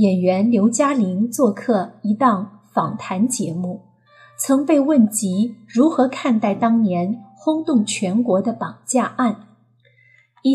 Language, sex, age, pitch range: Chinese, female, 30-49, 195-260 Hz